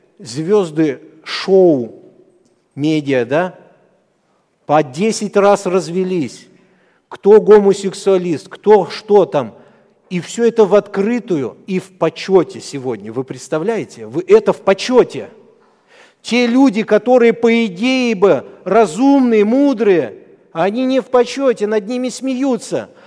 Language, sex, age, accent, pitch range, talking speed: Russian, male, 50-69, native, 185-235 Hz, 110 wpm